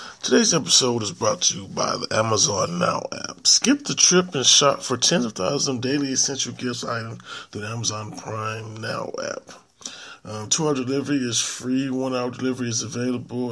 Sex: male